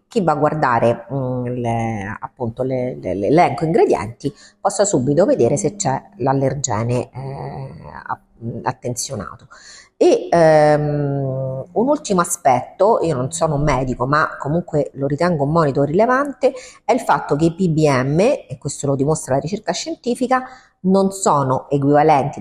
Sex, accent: female, native